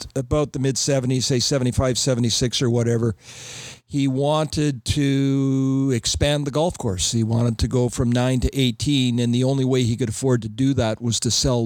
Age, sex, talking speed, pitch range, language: 50-69, male, 185 wpm, 120-135 Hz, English